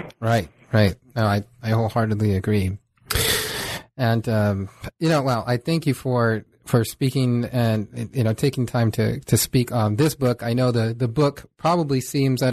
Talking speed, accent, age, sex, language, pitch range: 170 wpm, American, 30-49, male, English, 110-130 Hz